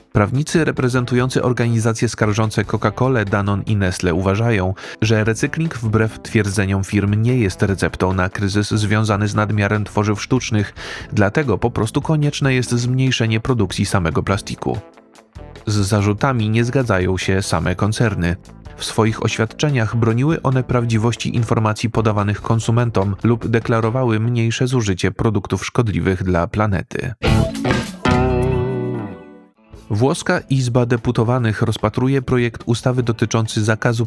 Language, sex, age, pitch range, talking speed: Polish, male, 30-49, 105-125 Hz, 115 wpm